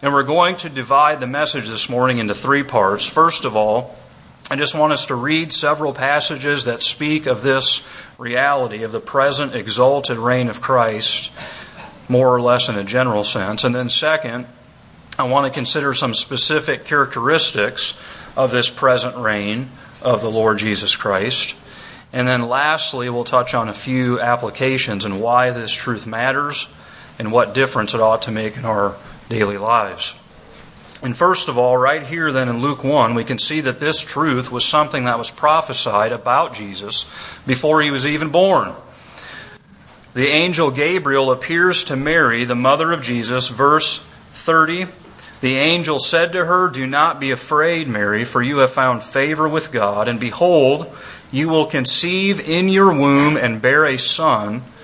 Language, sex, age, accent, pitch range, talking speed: English, male, 30-49, American, 120-150 Hz, 170 wpm